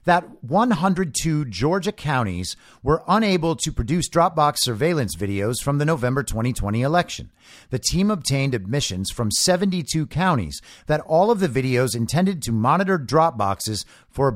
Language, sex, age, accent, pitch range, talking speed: English, male, 50-69, American, 115-170 Hz, 140 wpm